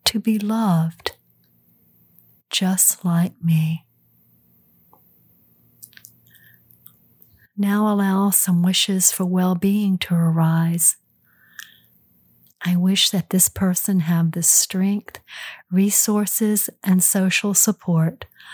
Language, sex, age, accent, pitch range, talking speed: English, female, 50-69, American, 165-205 Hz, 85 wpm